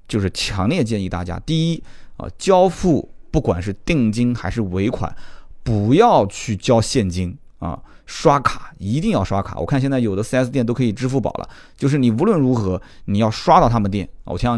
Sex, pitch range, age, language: male, 105-155 Hz, 20-39, Chinese